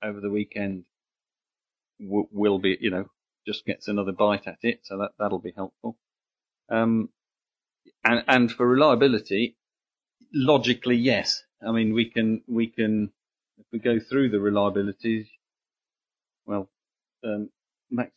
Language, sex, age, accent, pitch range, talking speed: German, male, 40-59, British, 100-110 Hz, 130 wpm